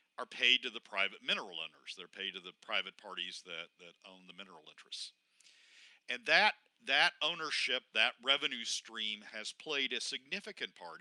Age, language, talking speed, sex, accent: 50-69, English, 170 wpm, male, American